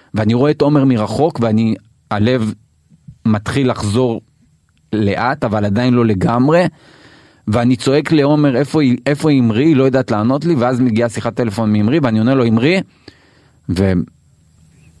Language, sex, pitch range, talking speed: Hebrew, male, 105-145 Hz, 150 wpm